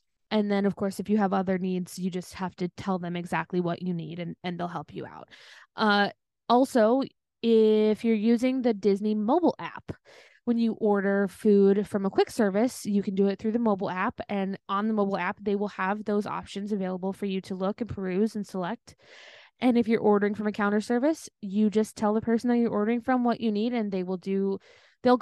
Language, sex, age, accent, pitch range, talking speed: English, female, 20-39, American, 195-235 Hz, 225 wpm